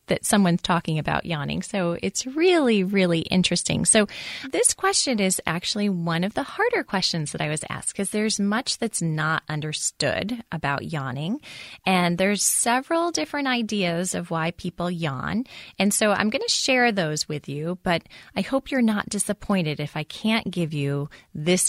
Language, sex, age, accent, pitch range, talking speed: English, female, 30-49, American, 160-220 Hz, 170 wpm